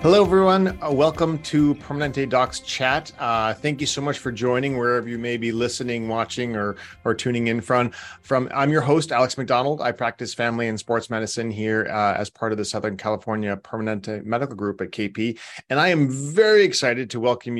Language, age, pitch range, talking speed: English, 30-49, 110-135 Hz, 195 wpm